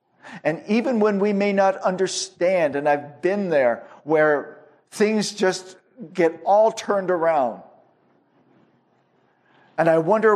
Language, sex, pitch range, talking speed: English, male, 130-165 Hz, 120 wpm